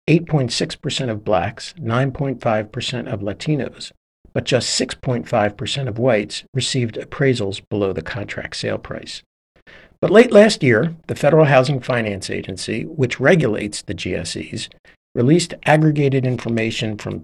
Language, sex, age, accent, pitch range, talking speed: English, male, 50-69, American, 115-145 Hz, 130 wpm